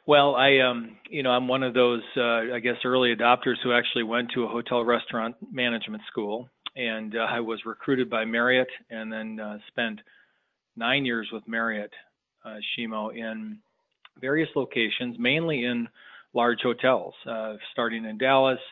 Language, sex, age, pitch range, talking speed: English, male, 40-59, 110-125 Hz, 165 wpm